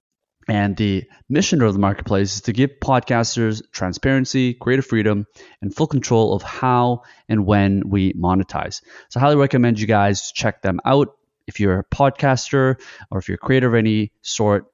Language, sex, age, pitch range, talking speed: English, male, 20-39, 100-125 Hz, 175 wpm